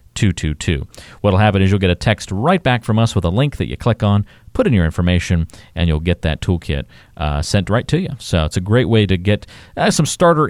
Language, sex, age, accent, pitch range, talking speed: English, male, 40-59, American, 85-110 Hz, 255 wpm